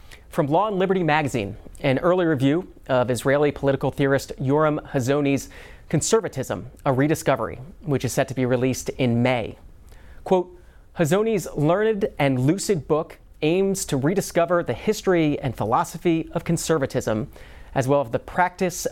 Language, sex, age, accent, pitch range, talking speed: English, male, 30-49, American, 135-170 Hz, 140 wpm